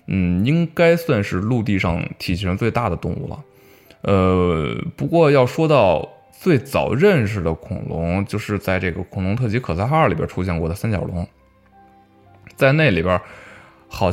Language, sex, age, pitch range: Chinese, male, 20-39, 90-130 Hz